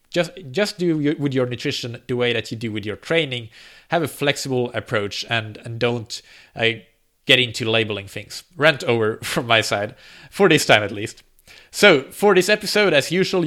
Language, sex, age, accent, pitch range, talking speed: English, male, 30-49, Norwegian, 125-165 Hz, 185 wpm